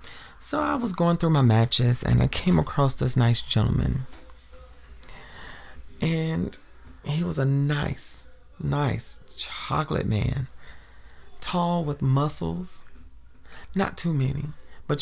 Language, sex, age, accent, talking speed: English, male, 30-49, American, 115 wpm